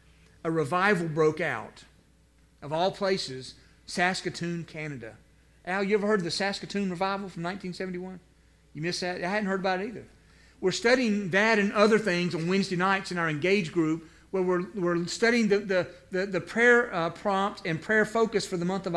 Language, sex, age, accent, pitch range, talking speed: English, male, 50-69, American, 170-215 Hz, 185 wpm